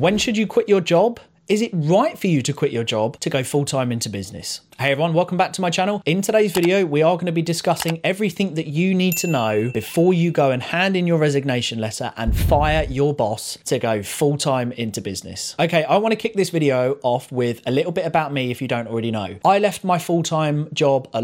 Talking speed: 245 wpm